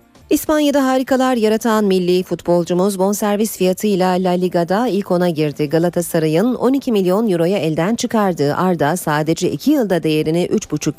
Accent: native